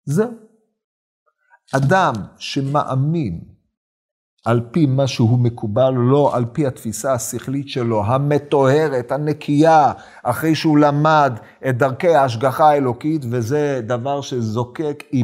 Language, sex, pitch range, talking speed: Hebrew, male, 125-175 Hz, 105 wpm